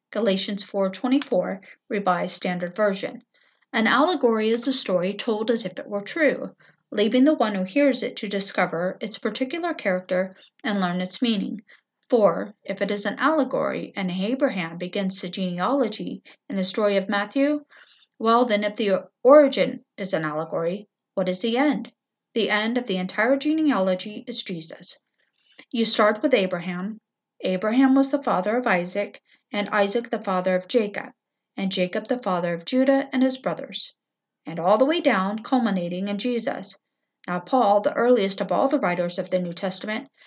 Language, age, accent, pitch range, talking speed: English, 50-69, American, 190-265 Hz, 165 wpm